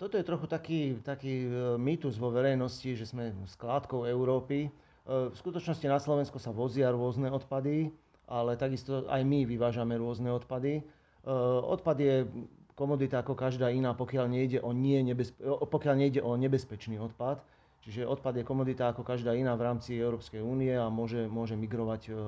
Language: Slovak